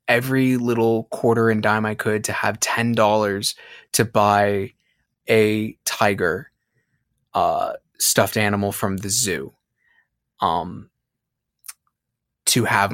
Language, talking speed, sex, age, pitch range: English, 105 wpm, male, 20-39, 105-120 Hz